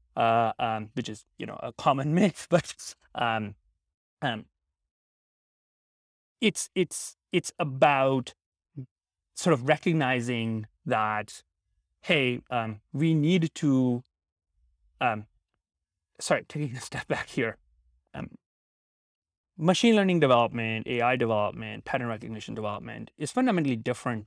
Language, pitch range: English, 110-150 Hz